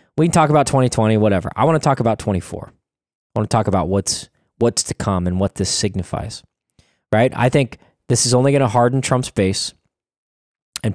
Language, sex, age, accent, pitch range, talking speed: English, male, 20-39, American, 100-125 Hz, 205 wpm